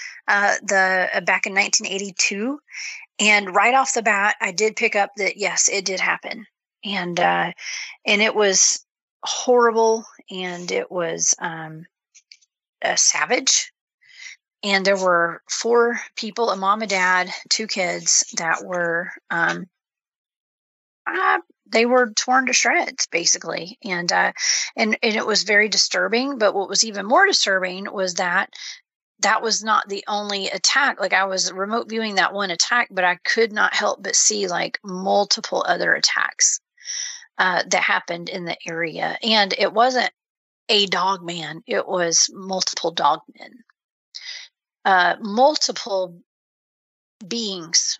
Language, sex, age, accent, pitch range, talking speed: English, female, 30-49, American, 185-230 Hz, 140 wpm